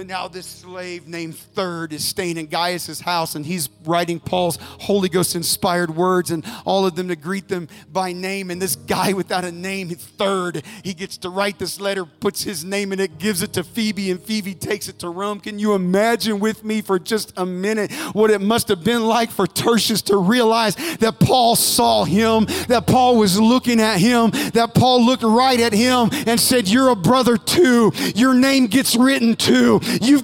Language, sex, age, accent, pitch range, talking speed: English, male, 40-59, American, 200-285 Hz, 200 wpm